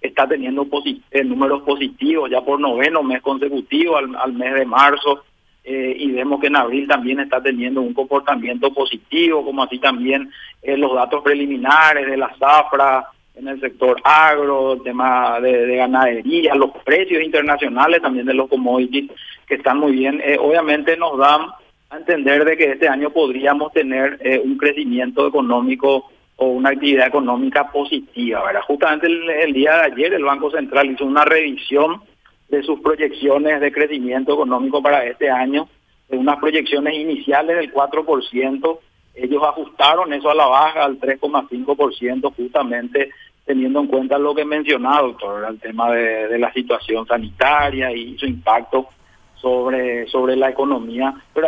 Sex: male